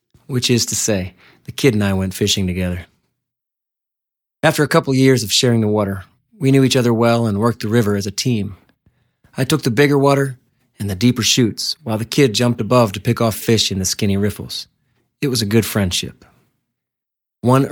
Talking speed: 200 wpm